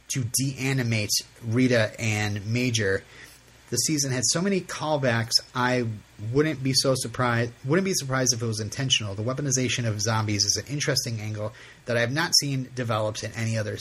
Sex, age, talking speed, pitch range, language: male, 30-49, 175 wpm, 115-140 Hz, English